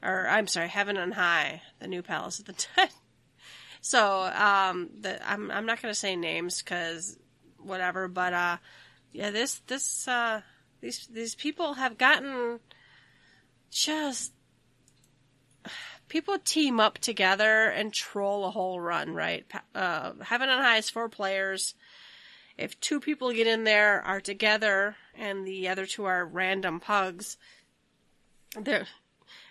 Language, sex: English, female